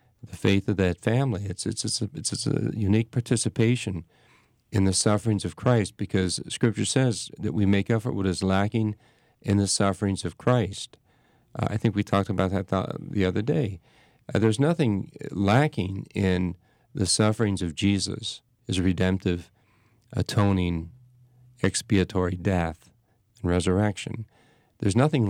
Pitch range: 95-115 Hz